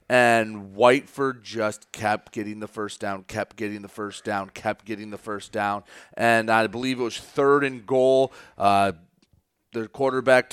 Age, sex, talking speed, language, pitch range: 30-49, male, 165 wpm, English, 105-135 Hz